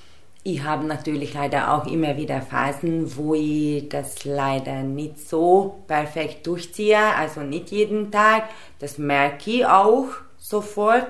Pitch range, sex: 150-180 Hz, female